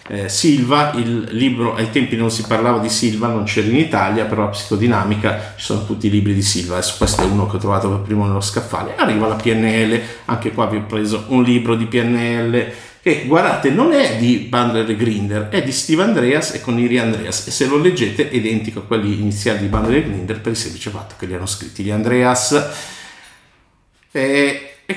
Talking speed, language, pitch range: 215 wpm, Italian, 105-125 Hz